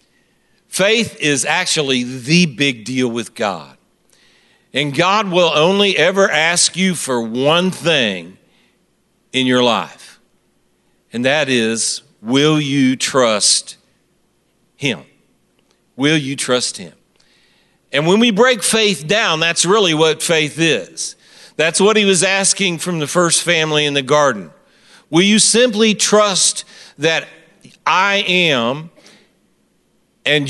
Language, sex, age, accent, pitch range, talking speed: English, male, 50-69, American, 130-180 Hz, 125 wpm